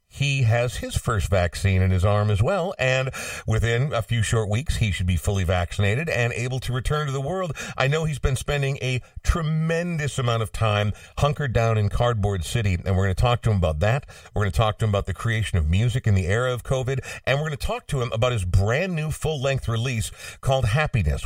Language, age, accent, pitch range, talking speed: English, 50-69, American, 100-130 Hz, 235 wpm